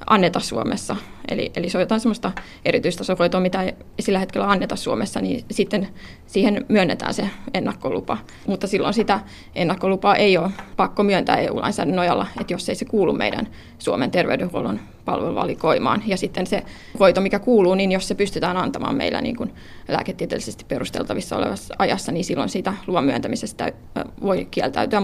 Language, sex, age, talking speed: Finnish, female, 20-39, 155 wpm